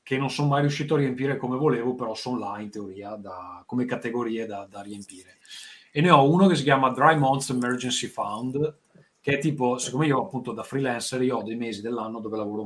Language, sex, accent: Italian, male, native